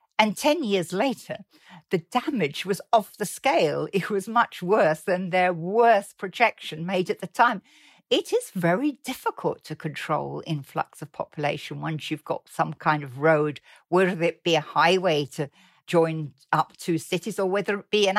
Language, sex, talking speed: English, female, 175 wpm